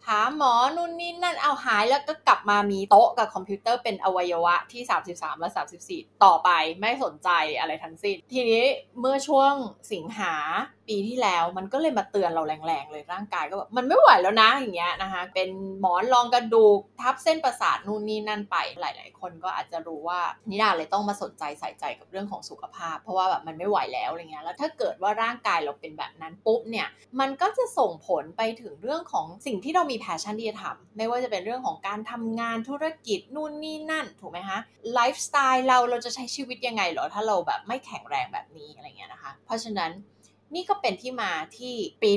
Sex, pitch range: female, 190-270 Hz